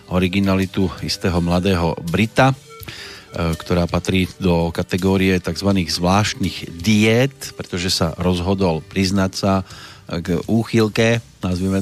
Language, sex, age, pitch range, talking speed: Slovak, male, 30-49, 90-110 Hz, 95 wpm